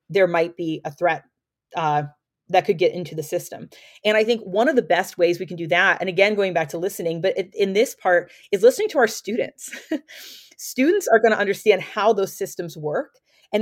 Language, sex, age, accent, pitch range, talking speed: English, female, 30-49, American, 170-235 Hz, 210 wpm